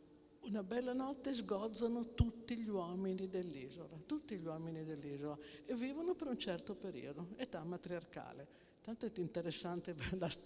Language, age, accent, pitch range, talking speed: Italian, 60-79, native, 160-205 Hz, 140 wpm